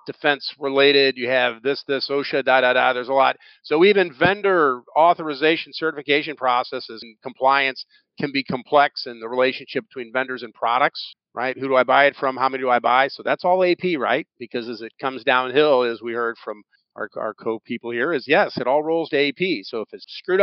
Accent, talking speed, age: American, 210 wpm, 40-59